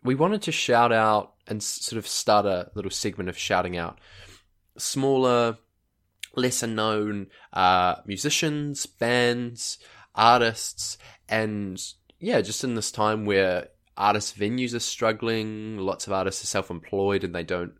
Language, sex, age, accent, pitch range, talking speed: English, male, 20-39, Australian, 85-110 Hz, 140 wpm